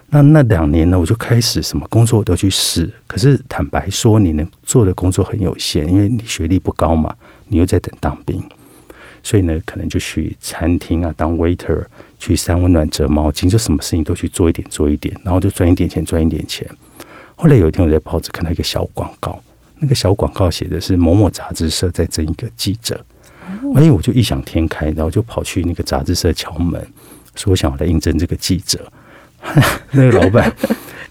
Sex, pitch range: male, 85-110 Hz